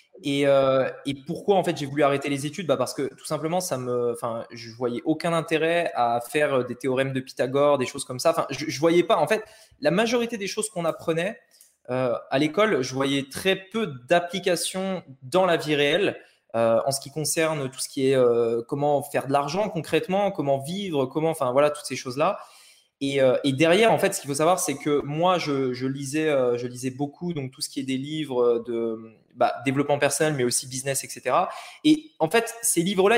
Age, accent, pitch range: 20-39, French, 135-180 Hz